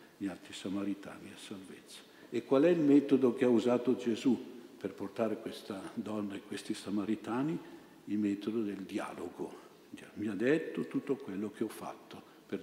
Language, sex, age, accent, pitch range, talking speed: Italian, male, 50-69, native, 100-120 Hz, 160 wpm